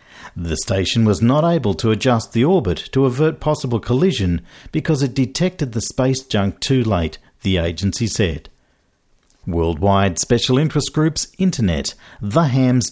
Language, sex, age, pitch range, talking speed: English, male, 50-69, 95-145 Hz, 145 wpm